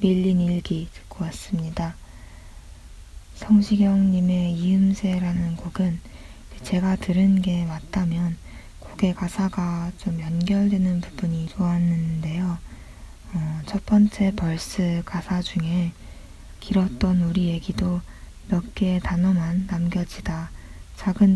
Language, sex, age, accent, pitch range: Korean, female, 20-39, native, 165-190 Hz